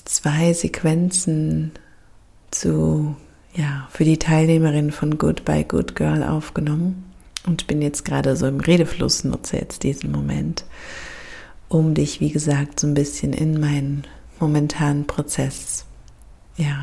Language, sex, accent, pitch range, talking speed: German, female, German, 140-170 Hz, 130 wpm